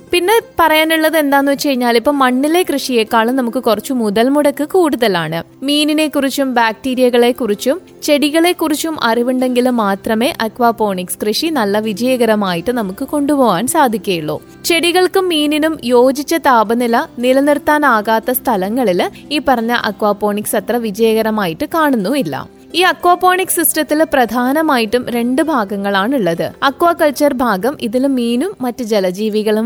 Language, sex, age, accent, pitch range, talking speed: Malayalam, female, 20-39, native, 230-300 Hz, 100 wpm